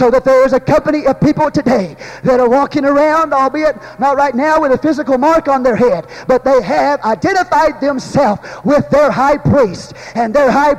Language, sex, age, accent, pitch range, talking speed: English, male, 40-59, American, 260-305 Hz, 200 wpm